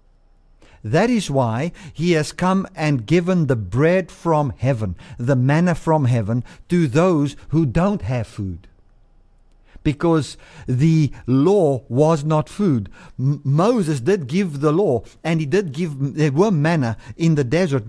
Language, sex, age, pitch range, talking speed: English, male, 50-69, 130-175 Hz, 145 wpm